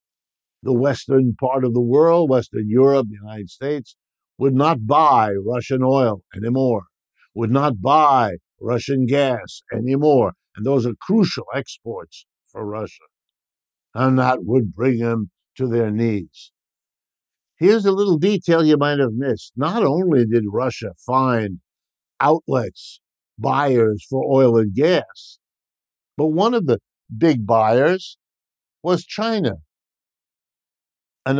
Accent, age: American, 60-79